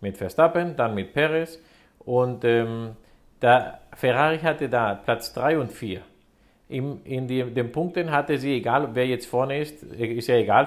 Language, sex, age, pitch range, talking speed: German, male, 50-69, 115-150 Hz, 170 wpm